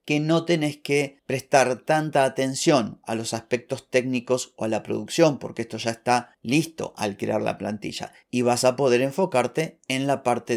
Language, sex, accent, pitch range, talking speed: Spanish, male, Argentinian, 115-135 Hz, 180 wpm